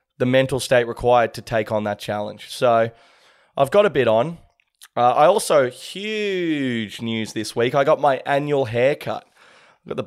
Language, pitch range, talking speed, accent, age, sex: English, 120-150 Hz, 180 wpm, Australian, 20-39, male